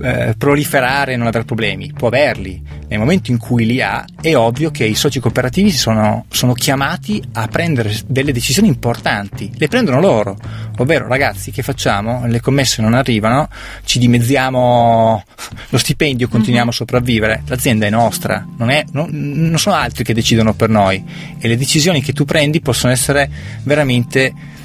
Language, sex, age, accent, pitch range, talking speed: Italian, male, 20-39, native, 110-140 Hz, 165 wpm